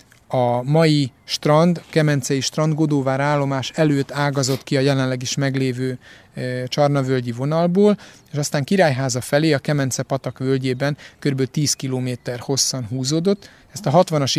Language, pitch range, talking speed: Hungarian, 130-150 Hz, 135 wpm